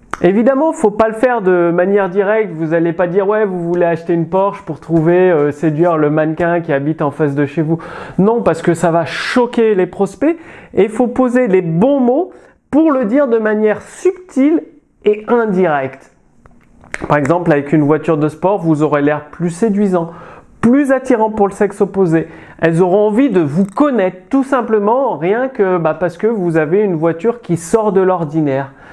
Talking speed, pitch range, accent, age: 200 wpm, 165-230 Hz, French, 30-49